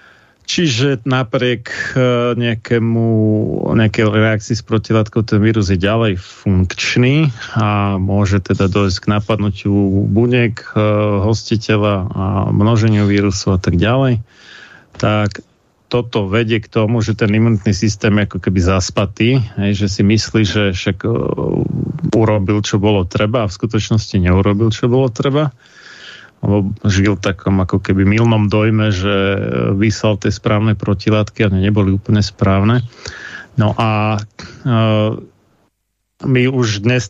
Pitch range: 100-115 Hz